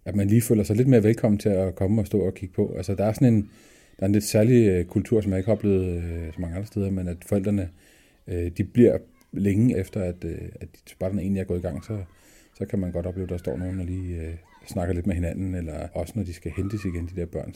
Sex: male